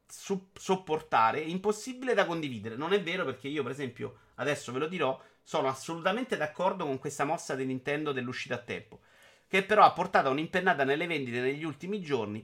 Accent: native